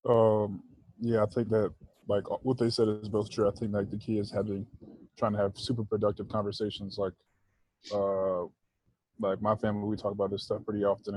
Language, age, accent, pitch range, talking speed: English, 20-39, American, 100-110 Hz, 200 wpm